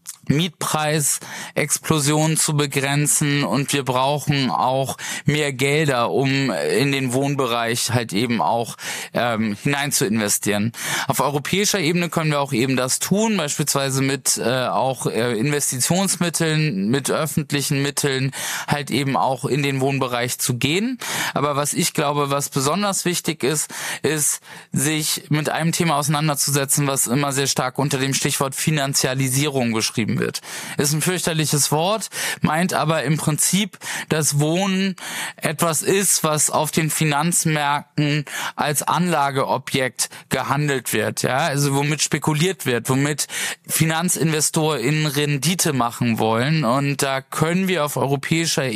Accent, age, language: German, 20-39, German